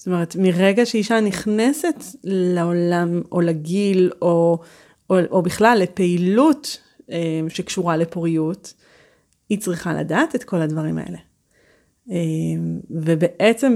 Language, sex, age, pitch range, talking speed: Hebrew, female, 30-49, 180-230 Hz, 100 wpm